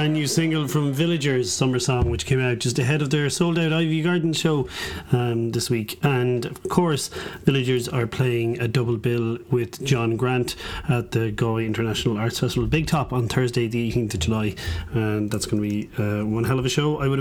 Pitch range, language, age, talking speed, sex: 115-145 Hz, English, 30-49, 210 wpm, male